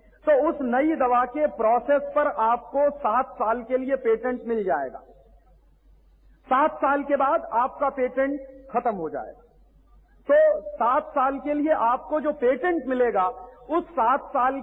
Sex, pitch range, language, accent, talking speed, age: male, 250-300 Hz, Hindi, native, 150 wpm, 40-59